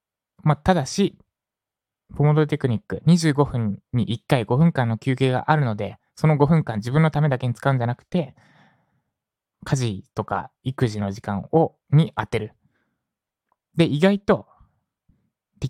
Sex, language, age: male, Japanese, 20-39